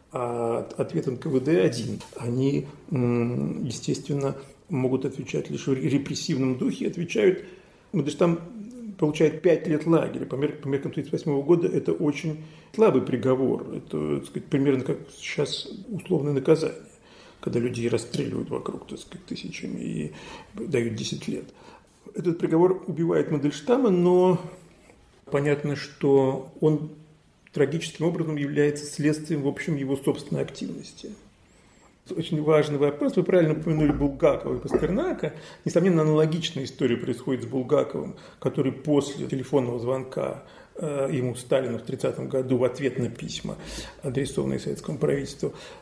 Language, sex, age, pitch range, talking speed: Russian, male, 40-59, 130-160 Hz, 120 wpm